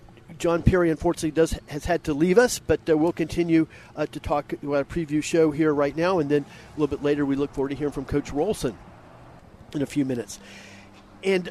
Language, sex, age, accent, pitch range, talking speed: English, male, 50-69, American, 150-185 Hz, 220 wpm